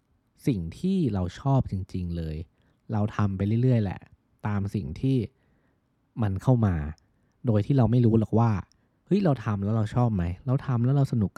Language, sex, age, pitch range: Thai, male, 20-39, 95-120 Hz